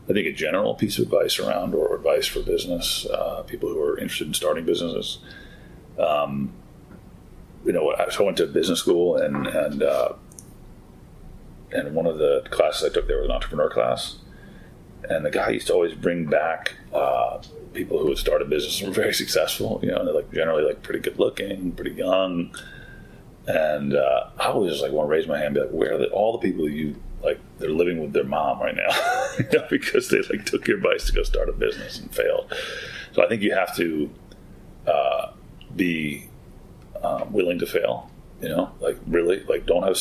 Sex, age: male, 30-49